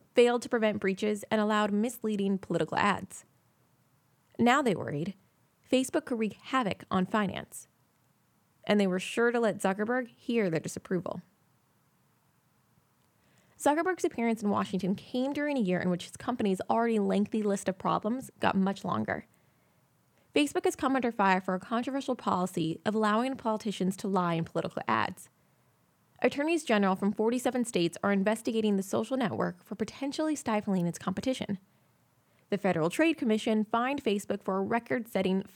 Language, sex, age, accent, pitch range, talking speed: English, female, 20-39, American, 190-235 Hz, 150 wpm